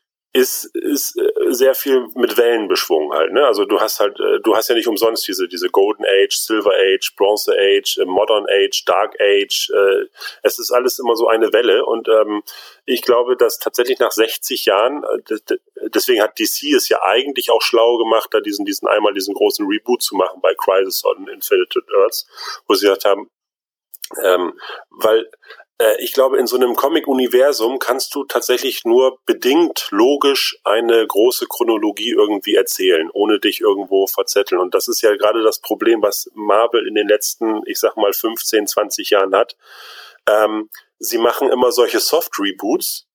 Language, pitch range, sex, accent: German, 355-460 Hz, male, German